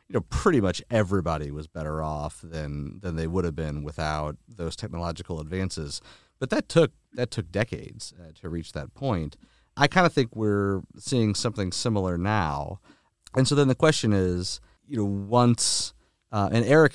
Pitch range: 80-100 Hz